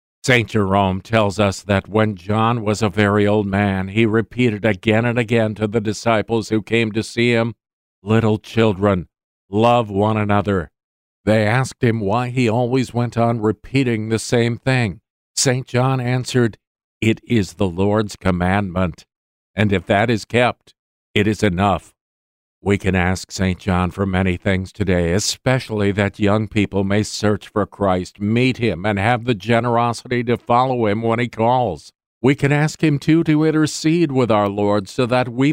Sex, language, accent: male, English, American